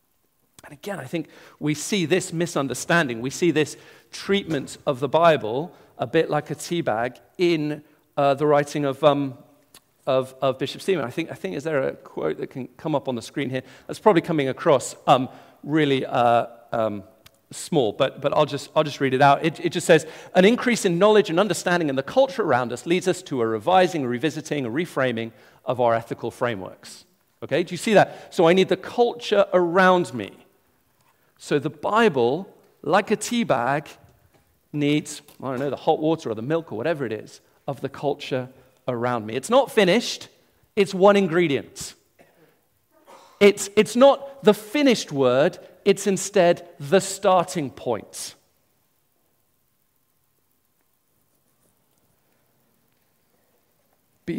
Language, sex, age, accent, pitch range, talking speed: English, male, 40-59, British, 135-185 Hz, 165 wpm